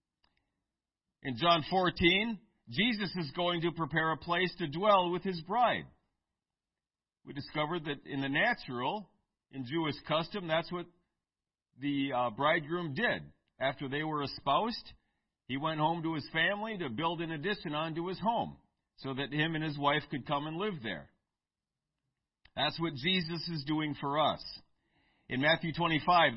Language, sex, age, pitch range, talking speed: English, male, 50-69, 140-180 Hz, 150 wpm